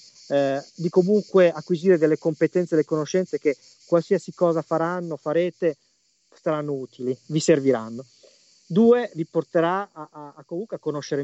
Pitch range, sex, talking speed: 140-170 Hz, male, 140 wpm